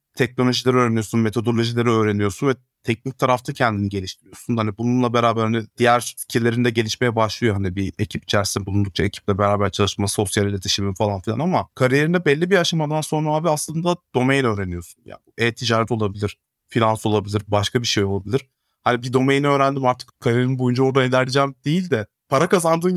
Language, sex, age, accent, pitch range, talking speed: Turkish, male, 30-49, native, 105-130 Hz, 160 wpm